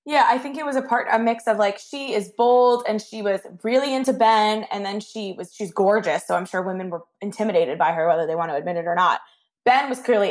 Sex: female